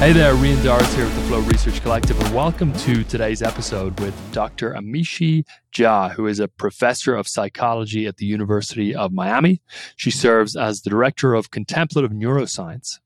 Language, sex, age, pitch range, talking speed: English, male, 20-39, 110-135 Hz, 175 wpm